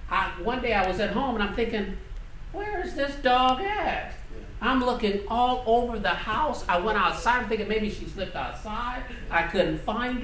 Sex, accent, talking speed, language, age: male, American, 195 wpm, English, 50-69